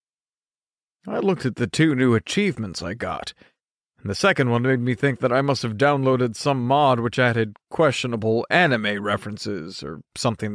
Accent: American